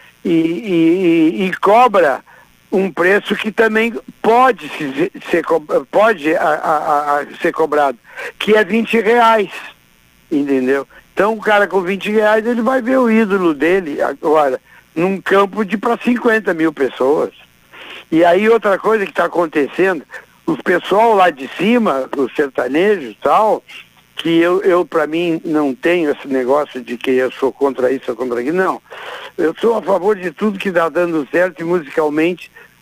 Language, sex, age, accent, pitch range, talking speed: Portuguese, male, 60-79, Brazilian, 155-215 Hz, 165 wpm